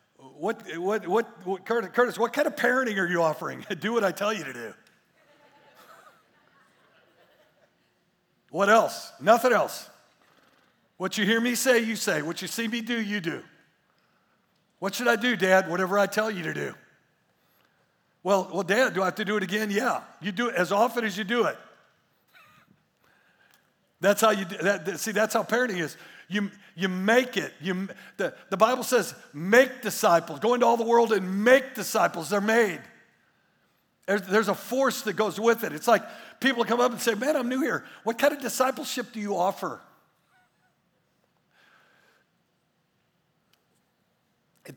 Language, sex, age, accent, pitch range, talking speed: English, male, 60-79, American, 185-235 Hz, 170 wpm